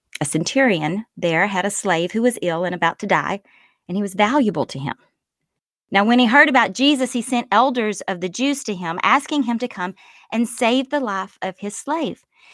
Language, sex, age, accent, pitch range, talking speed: English, female, 30-49, American, 195-265 Hz, 210 wpm